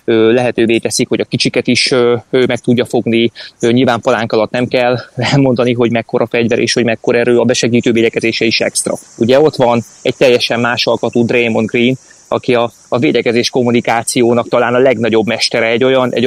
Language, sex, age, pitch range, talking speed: Hungarian, male, 20-39, 115-130 Hz, 180 wpm